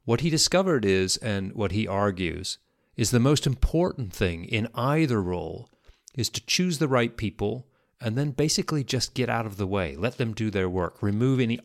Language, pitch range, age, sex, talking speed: English, 100-135 Hz, 30-49, male, 195 wpm